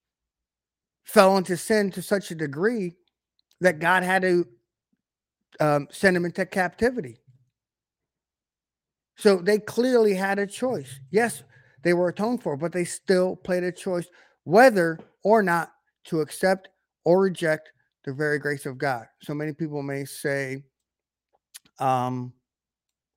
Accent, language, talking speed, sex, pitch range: American, English, 130 wpm, male, 135-180 Hz